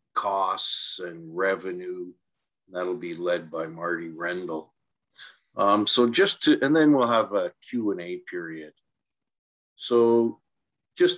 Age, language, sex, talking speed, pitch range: 50-69, English, male, 125 wpm, 90-110 Hz